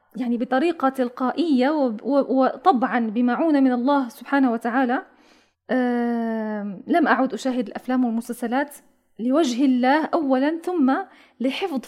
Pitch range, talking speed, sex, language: 235-270 Hz, 95 wpm, female, Arabic